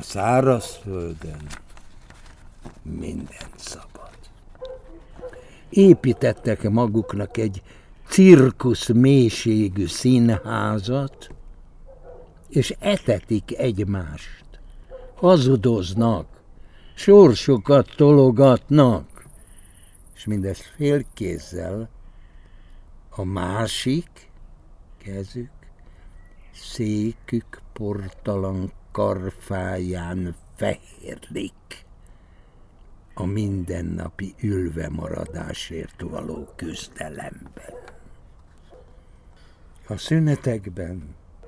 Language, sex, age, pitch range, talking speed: Hungarian, male, 60-79, 85-120 Hz, 50 wpm